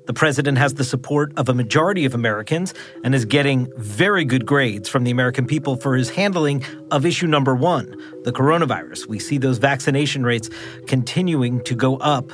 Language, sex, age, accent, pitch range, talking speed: English, male, 40-59, American, 125-160 Hz, 185 wpm